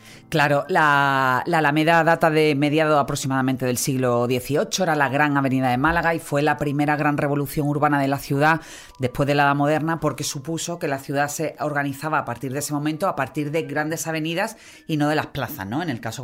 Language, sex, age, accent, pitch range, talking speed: Spanish, female, 30-49, Spanish, 130-165 Hz, 215 wpm